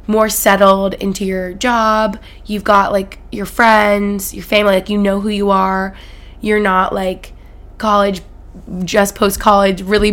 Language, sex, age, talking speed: English, female, 20-39, 150 wpm